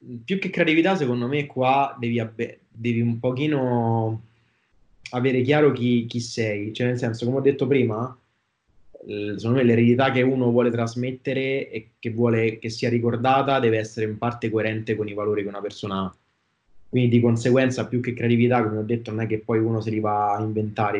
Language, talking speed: Italian, 195 wpm